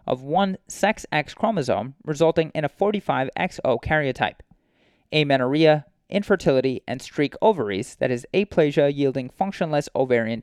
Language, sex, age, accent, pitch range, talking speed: English, male, 30-49, American, 135-185 Hz, 115 wpm